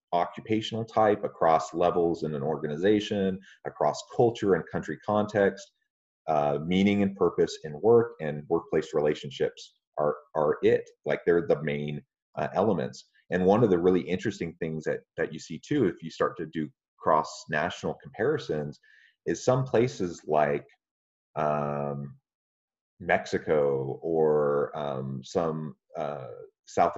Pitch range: 75-110 Hz